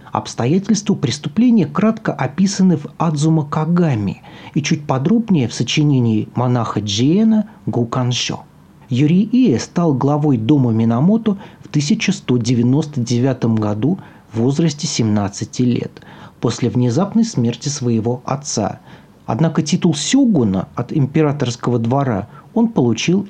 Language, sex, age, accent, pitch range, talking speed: Russian, male, 40-59, native, 120-175 Hz, 105 wpm